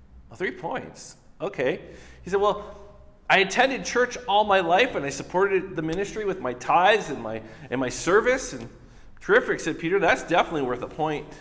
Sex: male